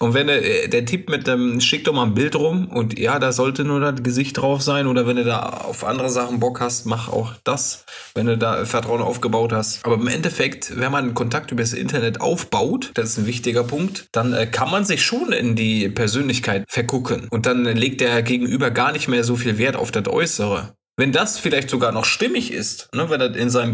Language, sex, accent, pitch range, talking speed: German, male, German, 110-125 Hz, 220 wpm